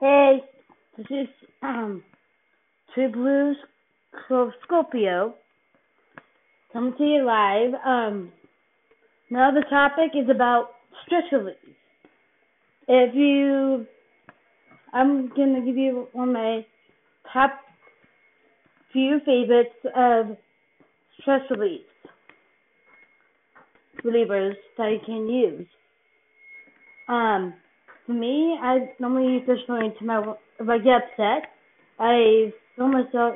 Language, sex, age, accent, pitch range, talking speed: English, female, 30-49, American, 225-270 Hz, 100 wpm